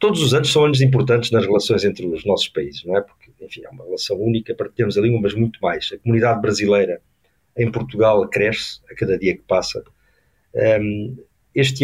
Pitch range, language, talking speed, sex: 115-135 Hz, Portuguese, 200 wpm, male